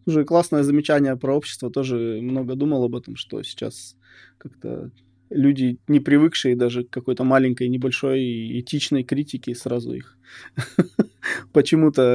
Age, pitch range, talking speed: 20-39, 120-140 Hz, 130 wpm